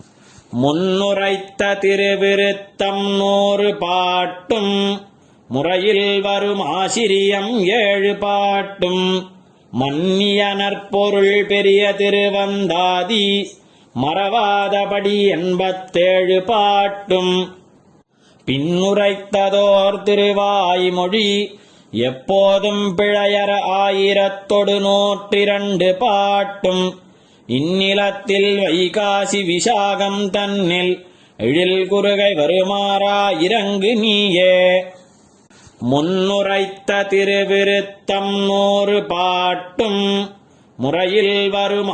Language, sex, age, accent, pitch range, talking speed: Tamil, male, 30-49, native, 185-200 Hz, 50 wpm